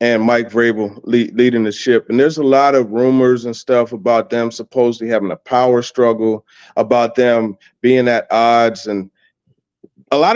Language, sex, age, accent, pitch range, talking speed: English, male, 30-49, American, 115-140 Hz, 175 wpm